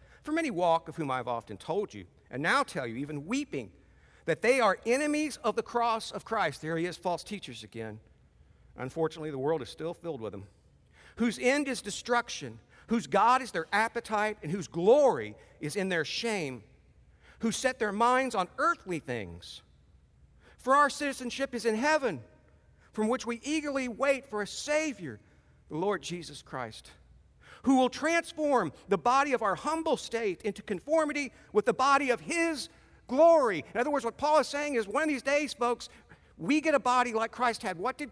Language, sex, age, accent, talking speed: English, male, 50-69, American, 185 wpm